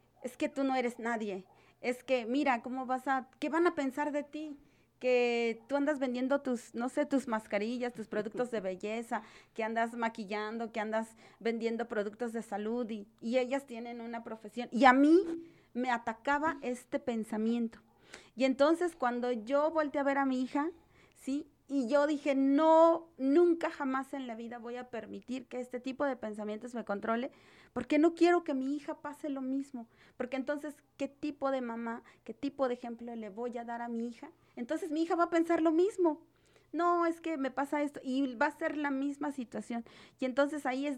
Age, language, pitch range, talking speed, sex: 30-49, Spanish, 235-290 Hz, 195 wpm, female